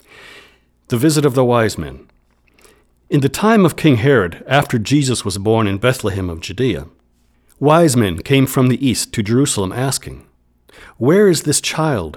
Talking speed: 165 wpm